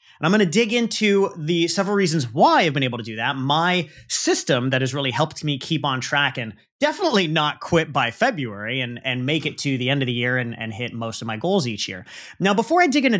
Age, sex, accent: 30-49, male, American